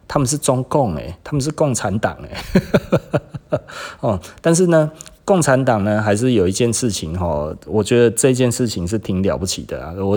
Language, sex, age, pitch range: Chinese, male, 30-49, 95-120 Hz